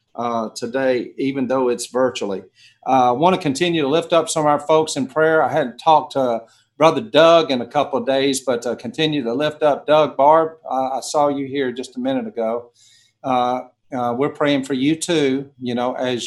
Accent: American